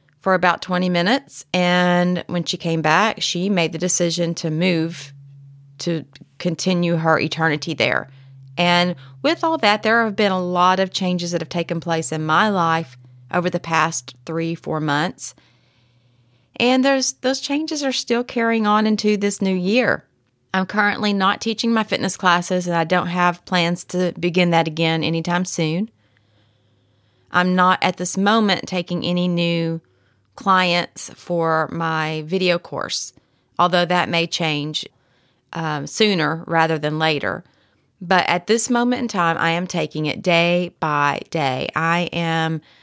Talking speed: 155 wpm